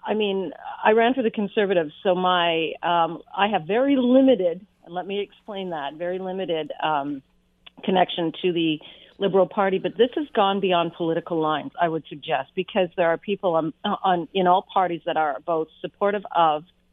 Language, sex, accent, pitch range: English, female, American, 155-190 Hz